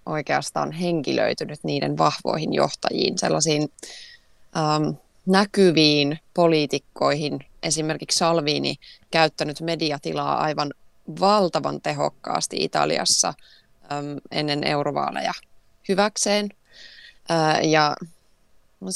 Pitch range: 155-185 Hz